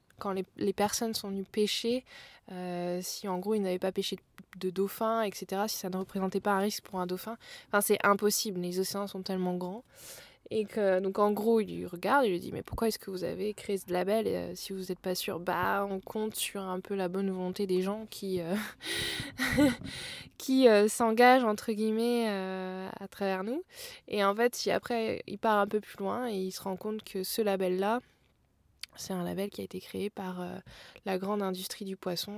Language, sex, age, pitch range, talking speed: French, female, 20-39, 185-220 Hz, 220 wpm